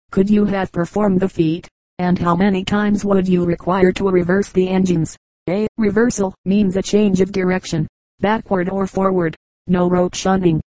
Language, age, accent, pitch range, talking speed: English, 40-59, American, 175-195 Hz, 165 wpm